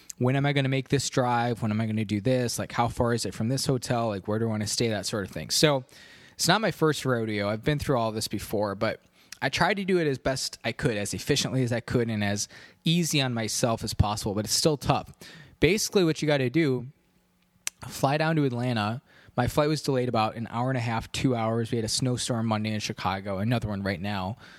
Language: English